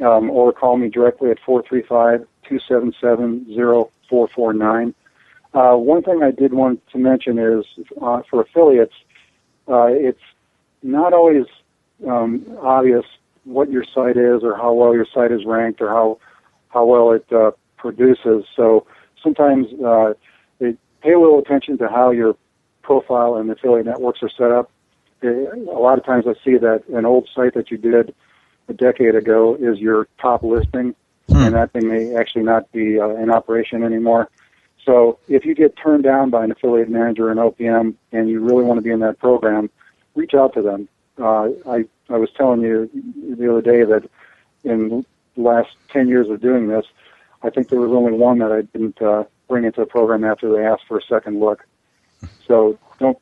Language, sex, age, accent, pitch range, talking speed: English, male, 50-69, American, 115-125 Hz, 180 wpm